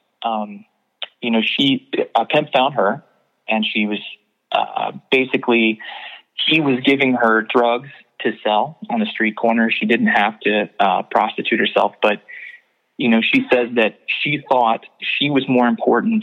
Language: English